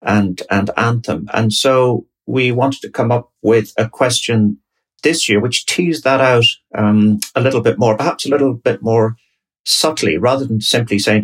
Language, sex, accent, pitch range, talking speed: English, male, British, 105-135 Hz, 180 wpm